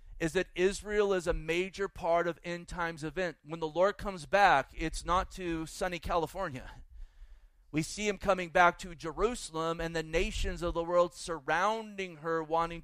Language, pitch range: English, 160-190 Hz